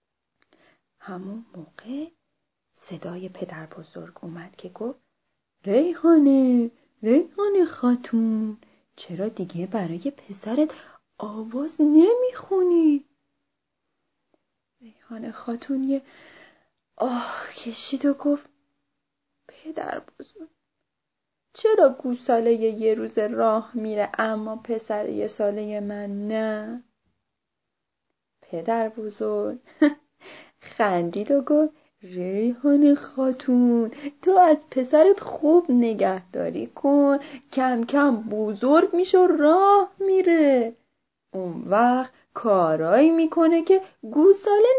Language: Persian